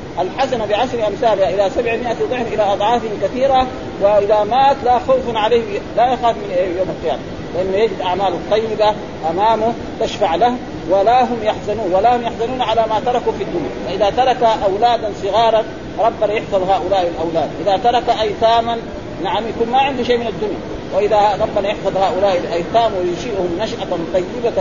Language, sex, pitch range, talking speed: Arabic, male, 195-235 Hz, 155 wpm